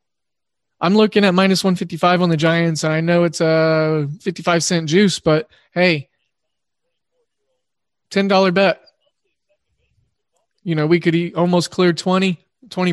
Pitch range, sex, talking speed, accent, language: 155-180 Hz, male, 130 wpm, American, English